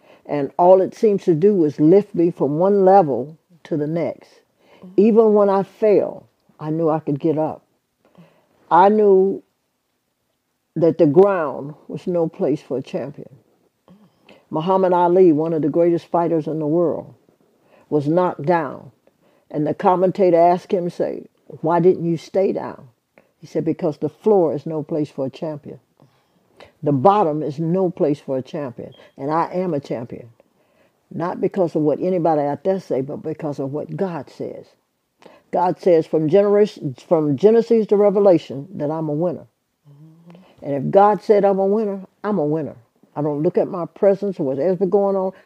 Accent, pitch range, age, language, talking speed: American, 155-195 Hz, 60-79, English, 170 wpm